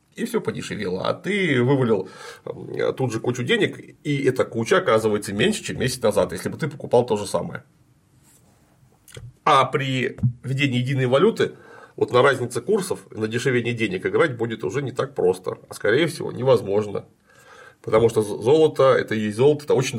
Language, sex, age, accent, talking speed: Russian, male, 30-49, native, 165 wpm